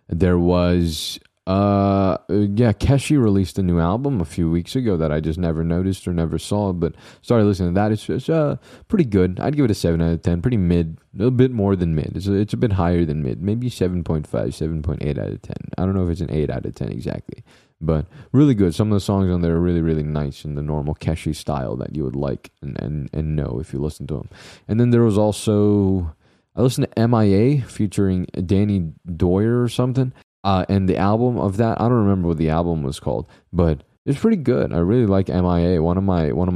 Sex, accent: male, American